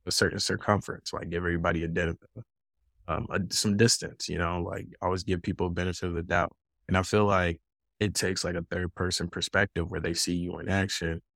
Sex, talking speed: male, 200 wpm